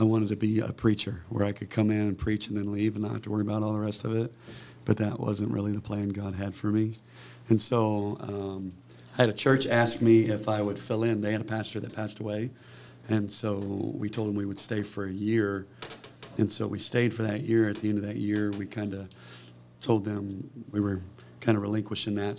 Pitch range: 105-125 Hz